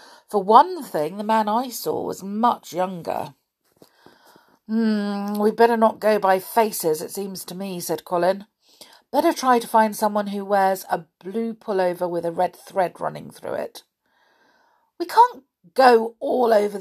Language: English